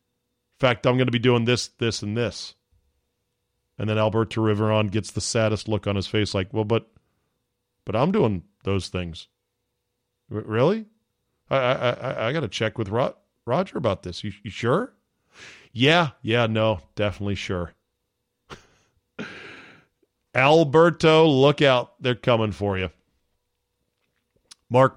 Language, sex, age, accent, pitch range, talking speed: English, male, 40-59, American, 100-130 Hz, 140 wpm